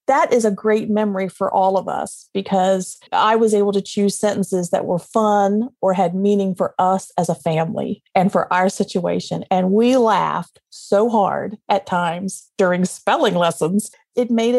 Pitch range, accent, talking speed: 185-225 Hz, American, 175 wpm